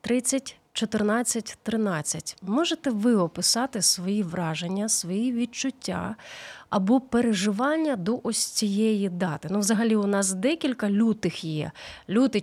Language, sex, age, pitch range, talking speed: Ukrainian, female, 30-49, 195-240 Hz, 115 wpm